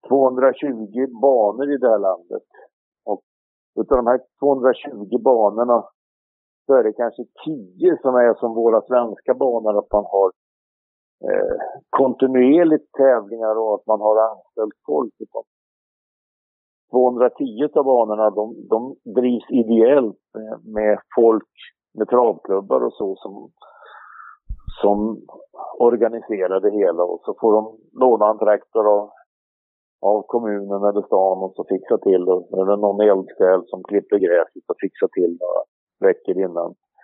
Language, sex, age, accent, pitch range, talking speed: Swedish, male, 50-69, Norwegian, 105-165 Hz, 130 wpm